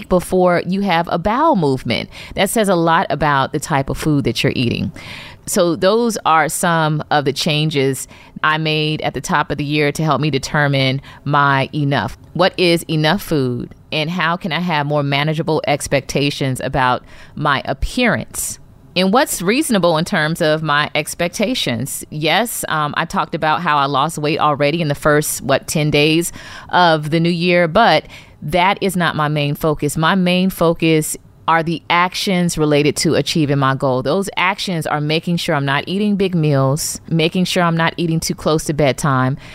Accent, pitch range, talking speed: American, 145-180 Hz, 180 wpm